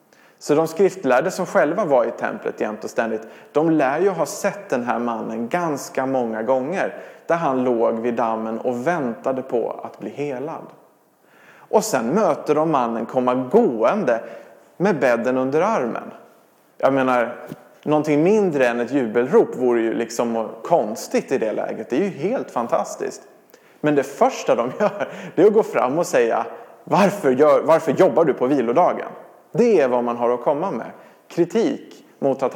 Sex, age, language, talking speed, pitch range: male, 30-49, English, 170 wpm, 125-175 Hz